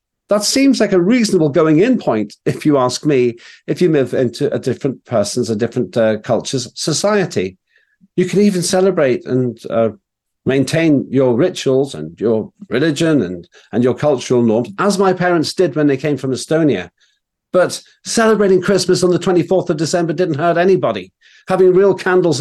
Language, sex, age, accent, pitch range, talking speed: English, male, 50-69, British, 115-180 Hz, 170 wpm